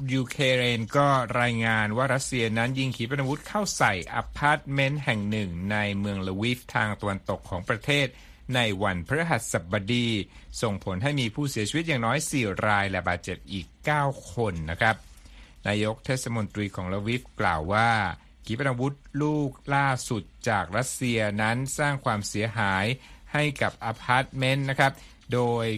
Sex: male